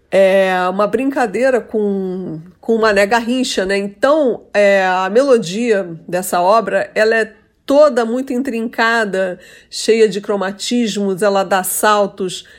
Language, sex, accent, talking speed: Portuguese, female, Brazilian, 125 wpm